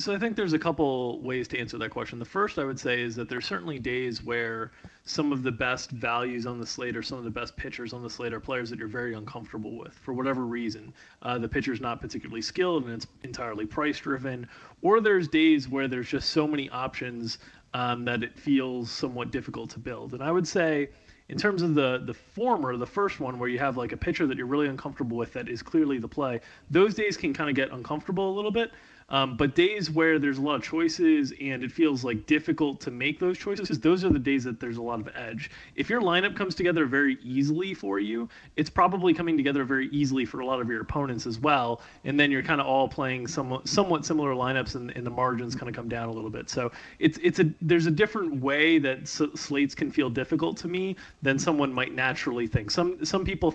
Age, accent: 30-49, American